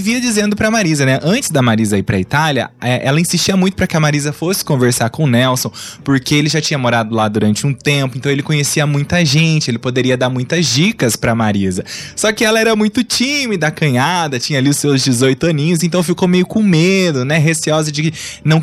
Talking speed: 220 wpm